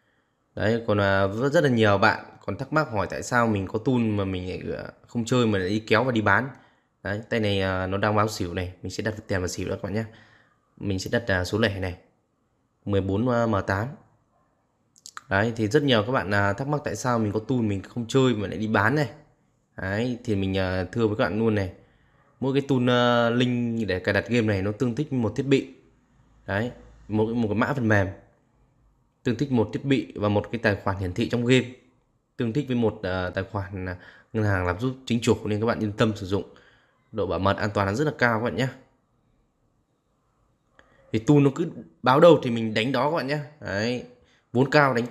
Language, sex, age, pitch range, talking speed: Vietnamese, male, 20-39, 105-130 Hz, 220 wpm